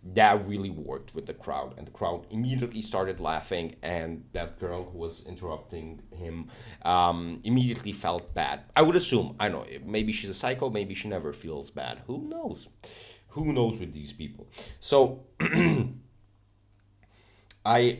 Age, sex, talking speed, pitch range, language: 30-49, male, 155 wpm, 90-115 Hz, English